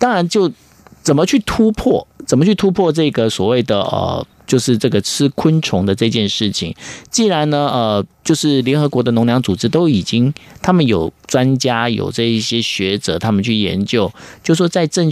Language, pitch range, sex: Chinese, 105-140 Hz, male